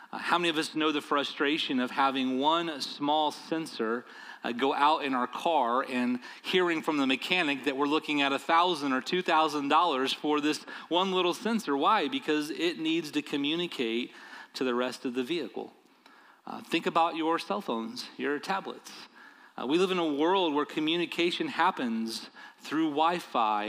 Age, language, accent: 30-49, English, American